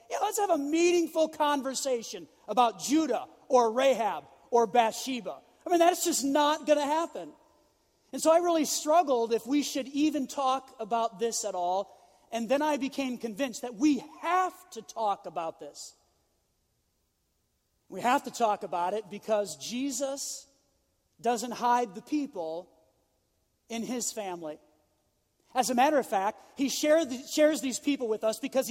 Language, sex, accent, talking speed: English, male, American, 155 wpm